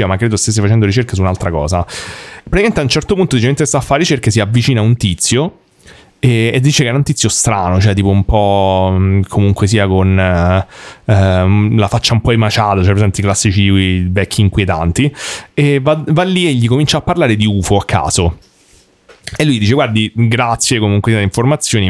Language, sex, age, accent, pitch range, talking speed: Italian, male, 30-49, native, 100-140 Hz, 195 wpm